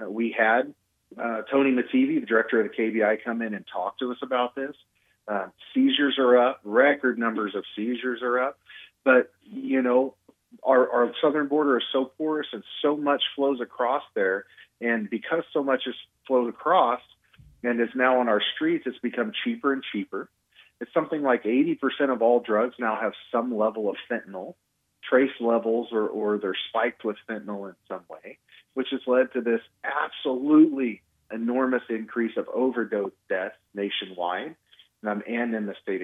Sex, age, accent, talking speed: male, 40-59, American, 175 wpm